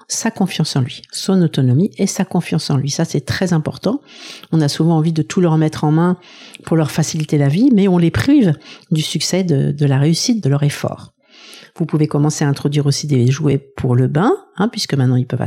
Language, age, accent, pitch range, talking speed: French, 50-69, French, 150-190 Hz, 230 wpm